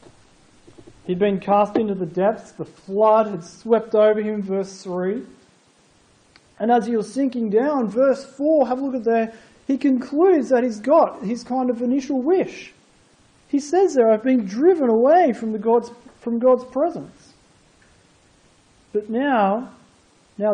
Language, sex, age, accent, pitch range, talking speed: English, male, 40-59, Australian, 180-255 Hz, 155 wpm